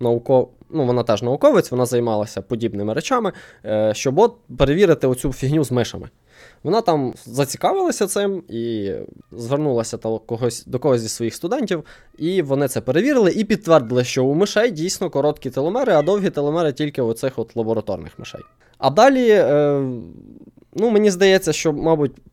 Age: 20-39